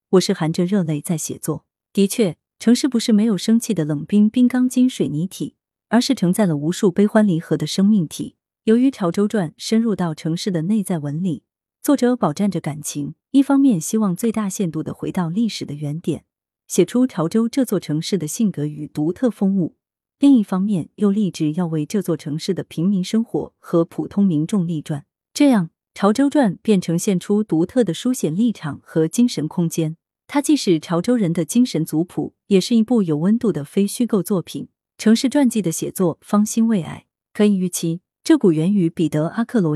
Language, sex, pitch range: Chinese, female, 160-220 Hz